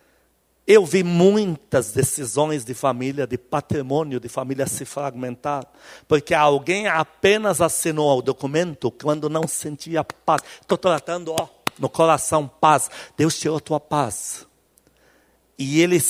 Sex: male